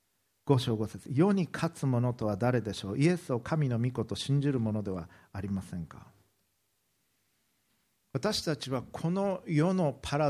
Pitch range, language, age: 110-150 Hz, Japanese, 50-69